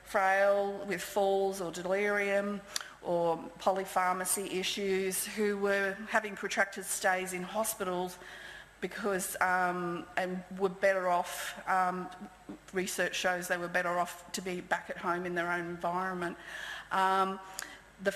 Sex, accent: female, Australian